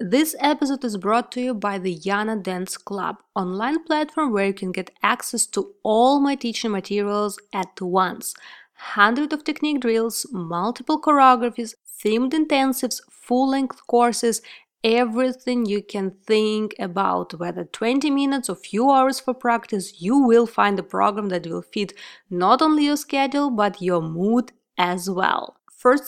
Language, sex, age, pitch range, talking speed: English, female, 20-39, 205-270 Hz, 150 wpm